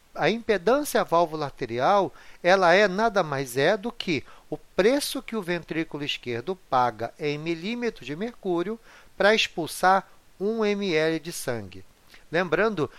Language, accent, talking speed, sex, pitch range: Portuguese, Brazilian, 140 wpm, male, 140-200 Hz